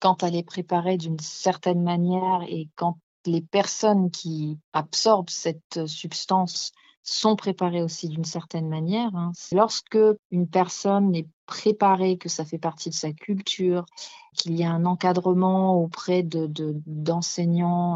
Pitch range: 170-195 Hz